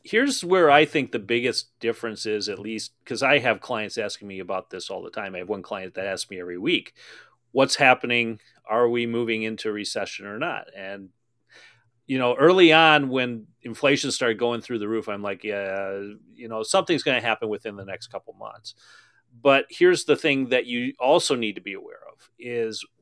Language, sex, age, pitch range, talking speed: English, male, 40-59, 110-135 Hz, 205 wpm